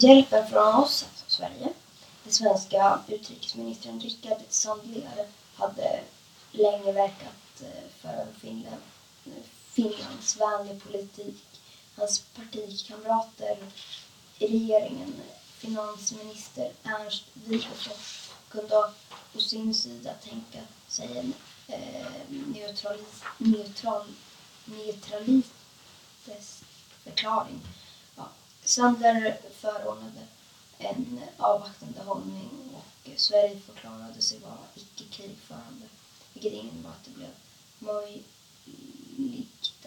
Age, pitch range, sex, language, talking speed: 20-39, 200-230 Hz, female, Swedish, 80 wpm